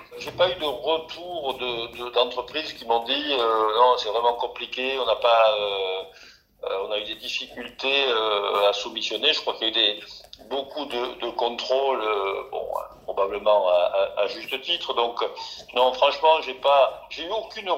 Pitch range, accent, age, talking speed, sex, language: 120-165 Hz, French, 50-69, 190 wpm, male, English